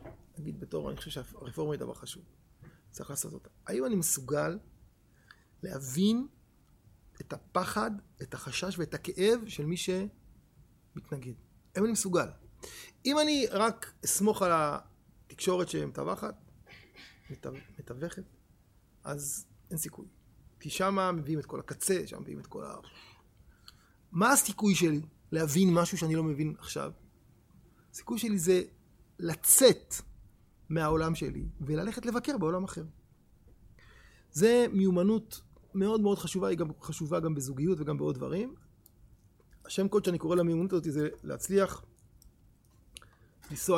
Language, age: Hebrew, 30-49